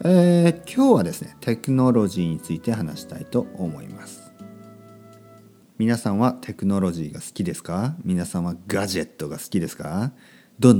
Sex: male